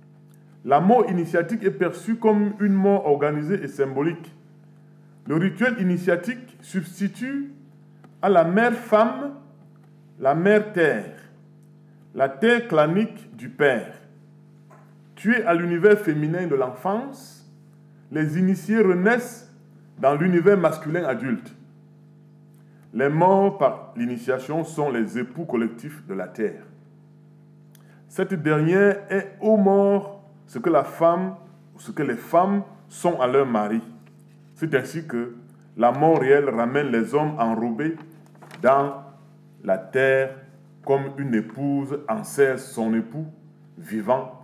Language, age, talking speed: French, 40-59, 115 wpm